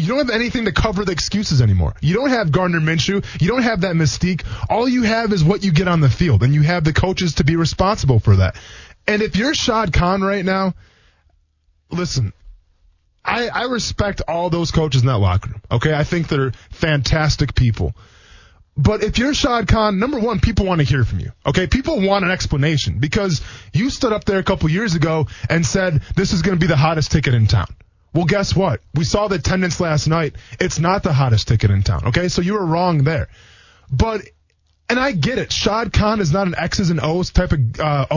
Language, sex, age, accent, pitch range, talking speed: English, male, 20-39, American, 130-205 Hz, 220 wpm